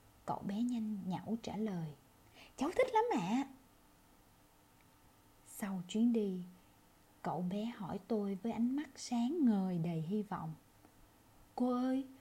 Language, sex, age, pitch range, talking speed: Vietnamese, female, 20-39, 175-240 Hz, 140 wpm